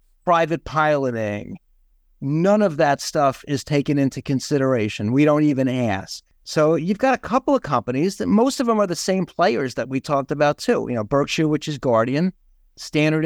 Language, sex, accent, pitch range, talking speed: English, male, American, 140-180 Hz, 185 wpm